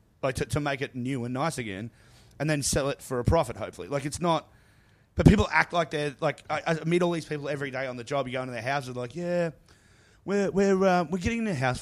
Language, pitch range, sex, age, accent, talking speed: English, 125-165 Hz, male, 30-49, Australian, 285 wpm